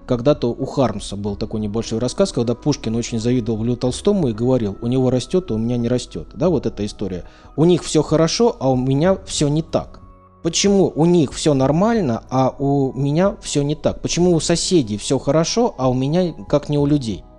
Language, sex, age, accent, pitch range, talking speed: Russian, male, 20-39, native, 120-155 Hz, 205 wpm